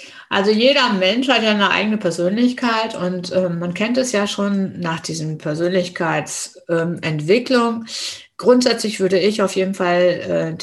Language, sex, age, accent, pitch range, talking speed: German, female, 60-79, German, 165-210 Hz, 145 wpm